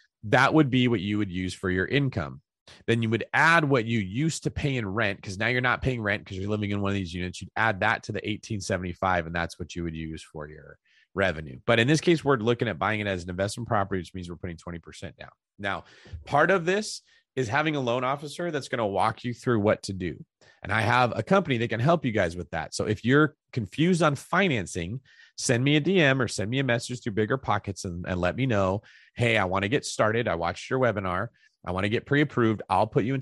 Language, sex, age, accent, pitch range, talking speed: English, male, 30-49, American, 95-135 Hz, 255 wpm